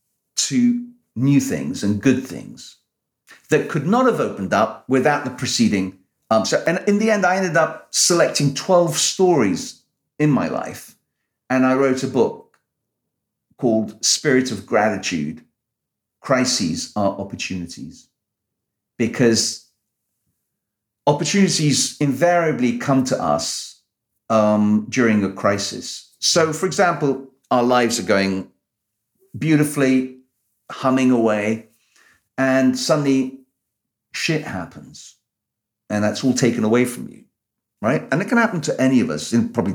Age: 50-69